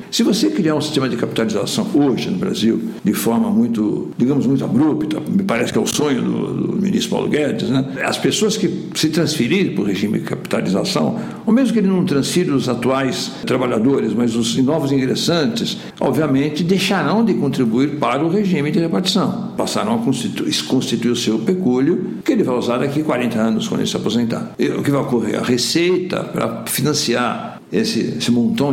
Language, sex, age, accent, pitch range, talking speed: Portuguese, male, 60-79, Brazilian, 120-190 Hz, 190 wpm